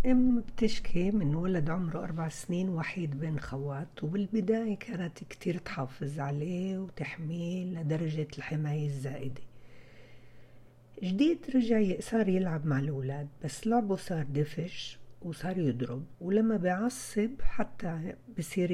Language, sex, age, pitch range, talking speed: Arabic, female, 60-79, 135-185 Hz, 110 wpm